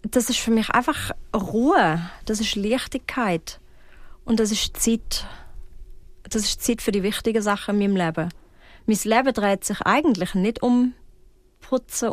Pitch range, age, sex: 195-235 Hz, 30-49, female